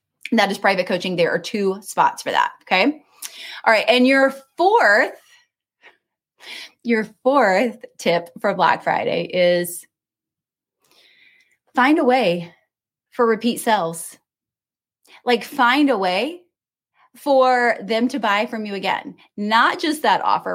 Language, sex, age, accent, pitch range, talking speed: English, female, 20-39, American, 185-255 Hz, 125 wpm